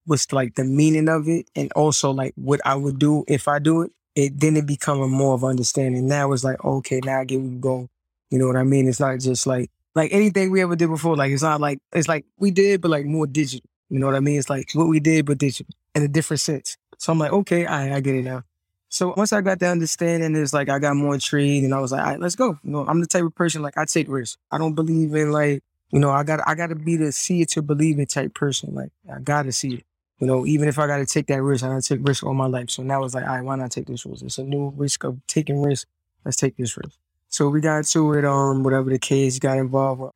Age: 20-39